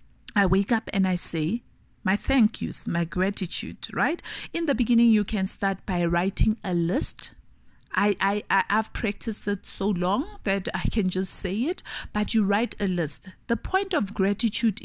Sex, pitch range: female, 185-220 Hz